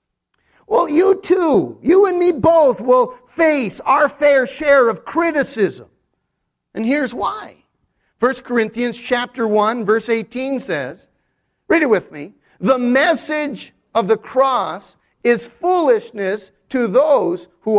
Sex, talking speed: male, 130 wpm